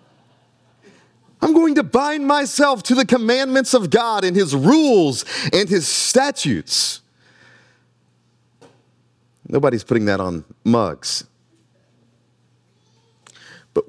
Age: 40-59